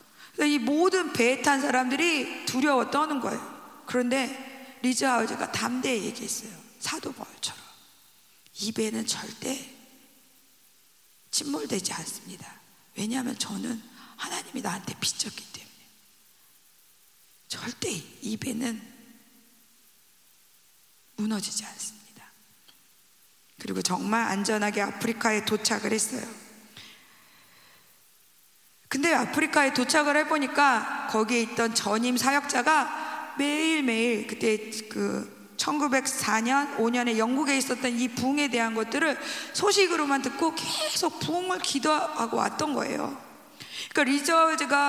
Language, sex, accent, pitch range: Korean, female, native, 230-300 Hz